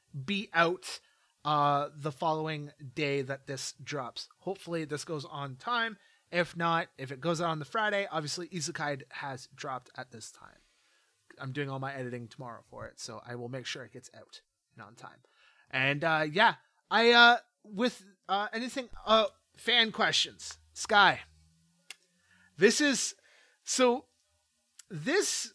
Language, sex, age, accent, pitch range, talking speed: English, male, 30-49, American, 150-205 Hz, 155 wpm